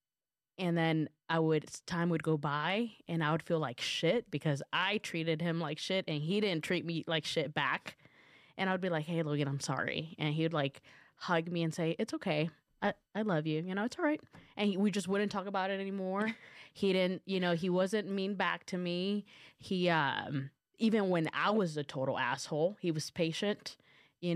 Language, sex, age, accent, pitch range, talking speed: English, female, 20-39, American, 155-190 Hz, 215 wpm